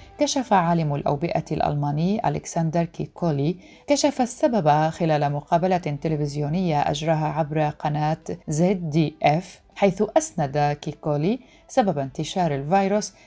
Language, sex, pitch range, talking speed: Arabic, female, 150-190 Hz, 95 wpm